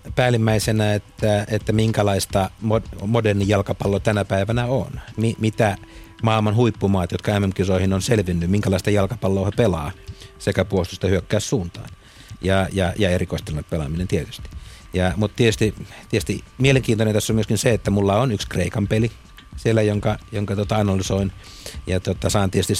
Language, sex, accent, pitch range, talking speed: Finnish, male, native, 95-115 Hz, 130 wpm